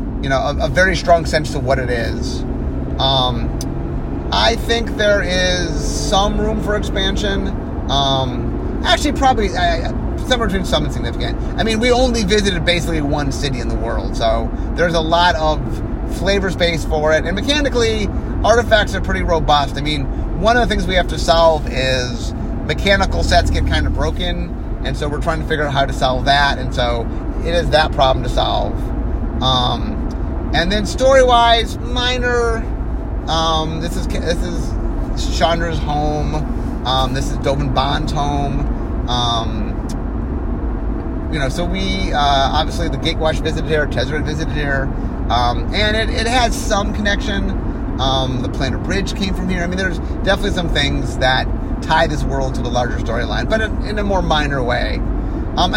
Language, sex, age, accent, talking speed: English, male, 30-49, American, 170 wpm